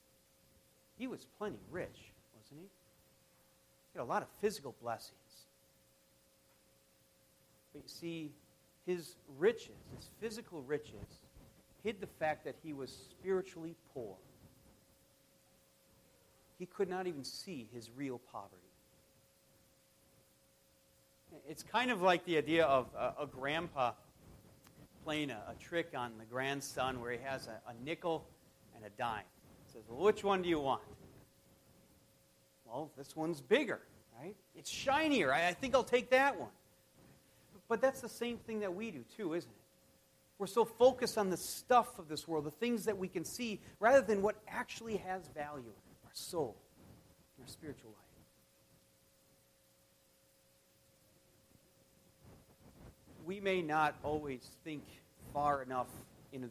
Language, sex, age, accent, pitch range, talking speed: English, male, 40-59, American, 120-195 Hz, 140 wpm